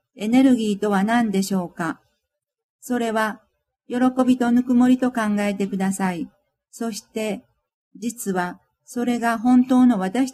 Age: 50-69